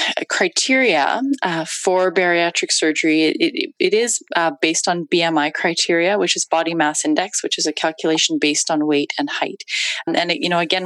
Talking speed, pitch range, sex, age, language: 175 wpm, 150-185 Hz, female, 20-39, English